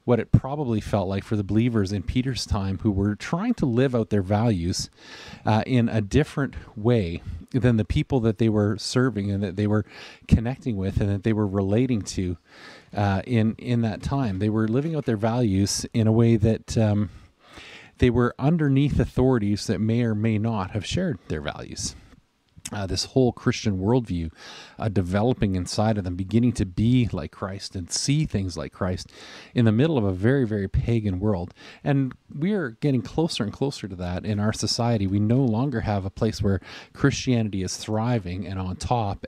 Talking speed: 195 wpm